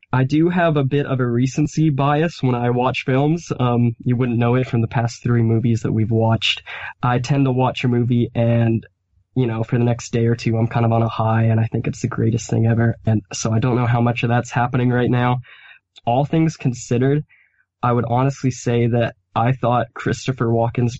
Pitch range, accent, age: 115-130 Hz, American, 10-29